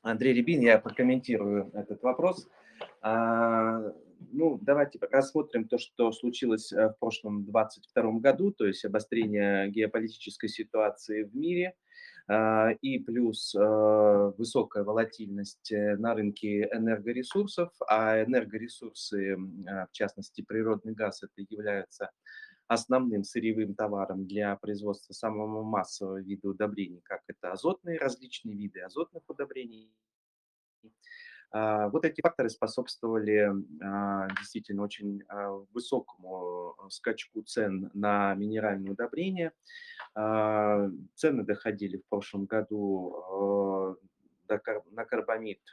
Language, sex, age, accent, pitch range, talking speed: Russian, male, 30-49, native, 100-120 Hz, 100 wpm